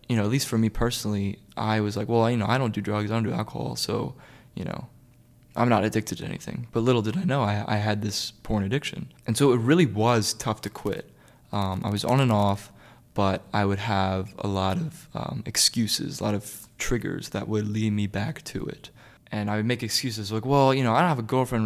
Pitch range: 105-125 Hz